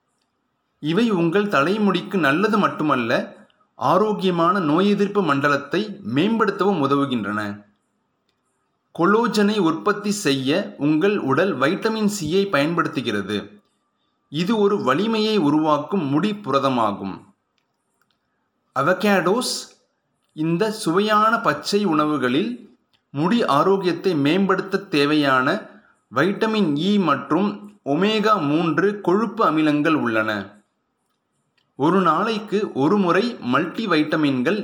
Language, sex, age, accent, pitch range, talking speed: Tamil, male, 30-49, native, 140-205 Hz, 80 wpm